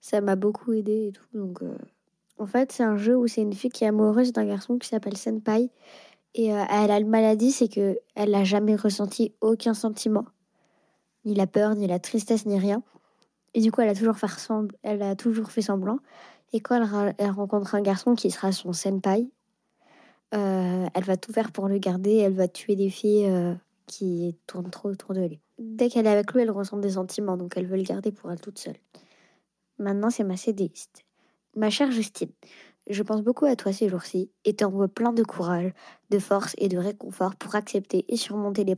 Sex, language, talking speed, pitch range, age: female, French, 215 wpm, 195-225 Hz, 20-39